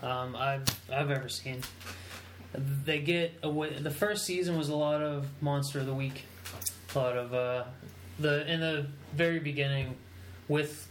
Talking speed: 160 wpm